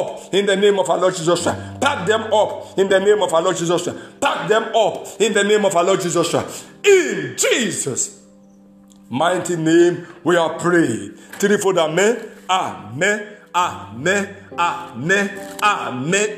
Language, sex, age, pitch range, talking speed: English, male, 50-69, 135-195 Hz, 160 wpm